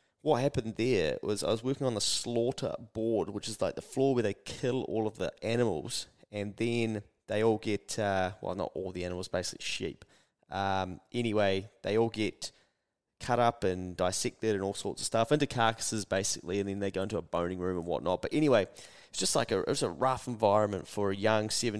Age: 20-39